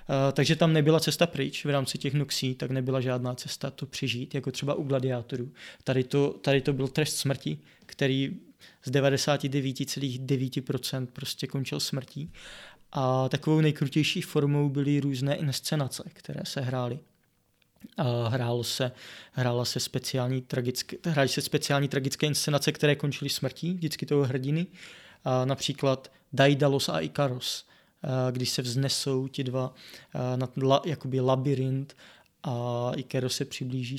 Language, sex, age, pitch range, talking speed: Czech, male, 20-39, 130-145 Hz, 140 wpm